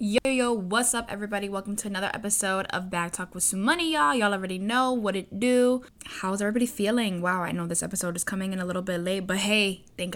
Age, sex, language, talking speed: 10-29, female, English, 235 wpm